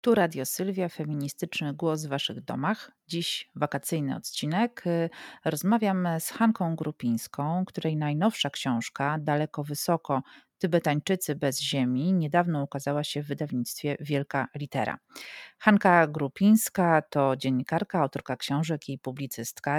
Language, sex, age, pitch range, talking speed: Polish, female, 40-59, 140-180 Hz, 115 wpm